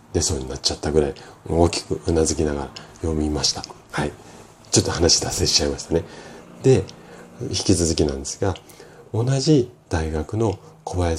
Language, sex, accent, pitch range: Japanese, male, native, 80-110 Hz